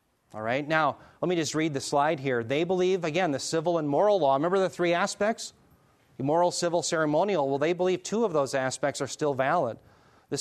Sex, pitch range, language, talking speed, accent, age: male, 130-170 Hz, English, 215 wpm, American, 30-49